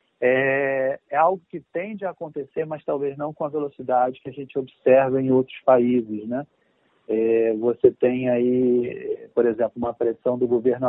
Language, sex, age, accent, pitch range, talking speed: Portuguese, male, 40-59, Brazilian, 125-145 Hz, 165 wpm